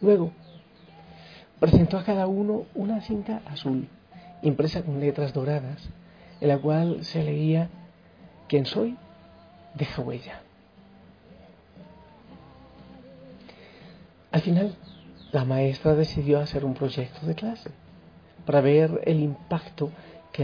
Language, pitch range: Spanish, 135-170 Hz